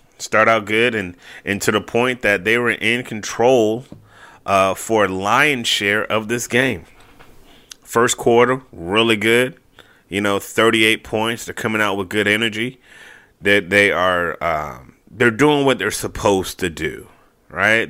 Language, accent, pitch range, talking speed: English, American, 95-115 Hz, 160 wpm